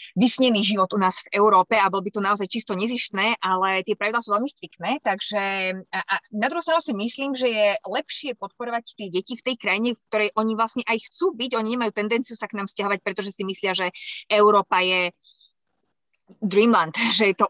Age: 20-39